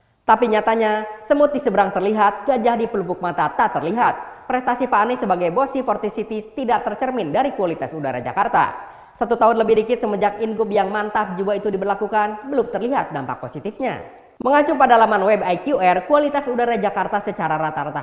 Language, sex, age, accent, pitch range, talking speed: Indonesian, female, 20-39, native, 185-255 Hz, 165 wpm